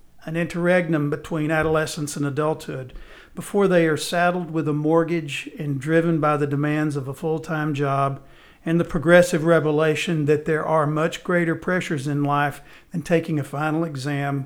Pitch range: 145-175 Hz